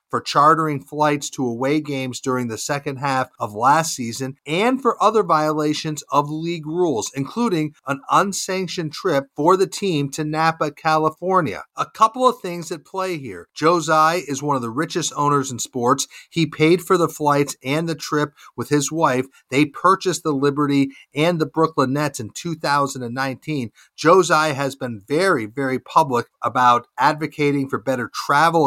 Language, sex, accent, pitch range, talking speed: English, male, American, 135-165 Hz, 165 wpm